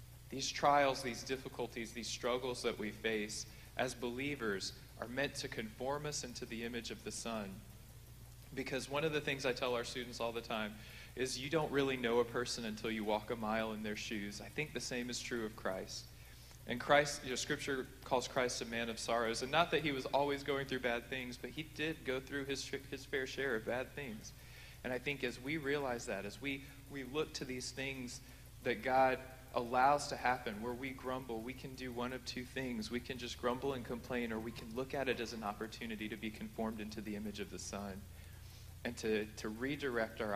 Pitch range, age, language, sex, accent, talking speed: 110-130 Hz, 40-59, English, male, American, 215 wpm